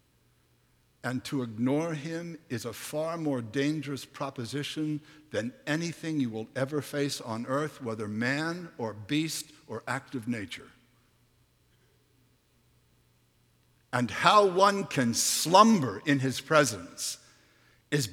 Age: 60-79